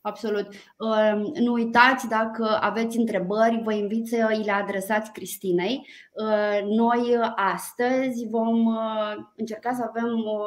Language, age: Romanian, 20-39